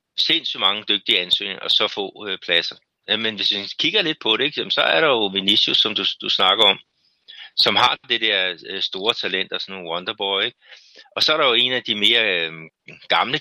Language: Danish